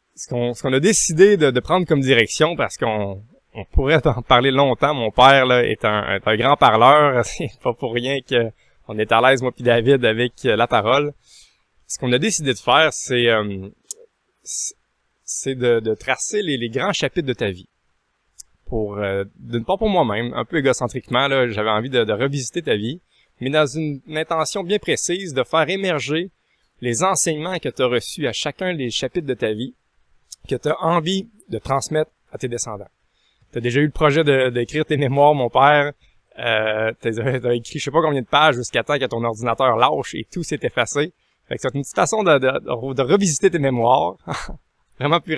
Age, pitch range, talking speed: 20-39, 115-155 Hz, 210 wpm